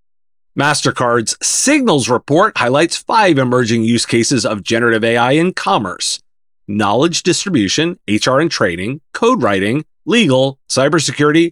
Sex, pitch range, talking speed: male, 115-170 Hz, 120 wpm